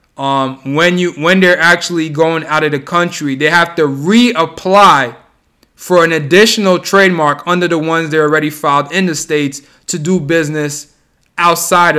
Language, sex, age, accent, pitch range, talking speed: English, male, 20-39, American, 145-170 Hz, 160 wpm